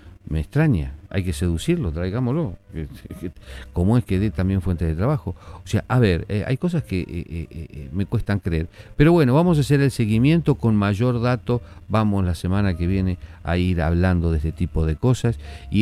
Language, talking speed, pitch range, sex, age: Spanish, 195 wpm, 85-105 Hz, male, 40-59